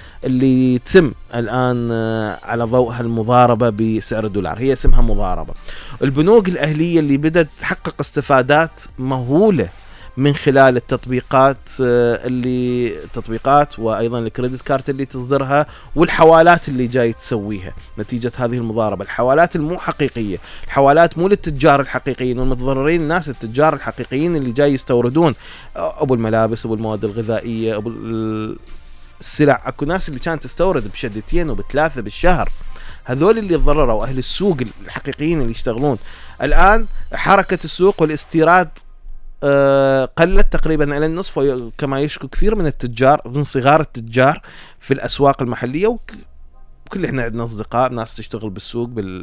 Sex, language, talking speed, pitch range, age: male, Arabic, 120 wpm, 110-145 Hz, 30-49